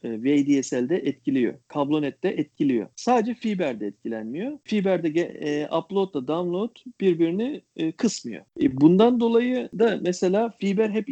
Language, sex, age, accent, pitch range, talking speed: Turkish, male, 40-59, native, 160-215 Hz, 110 wpm